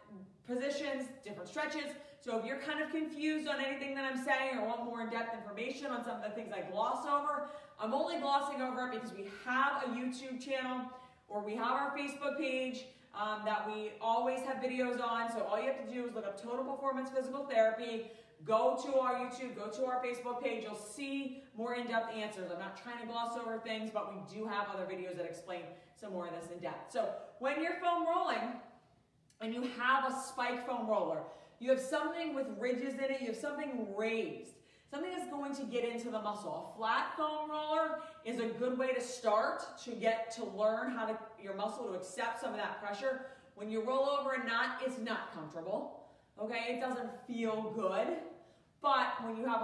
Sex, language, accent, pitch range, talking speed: female, English, American, 215-270 Hz, 210 wpm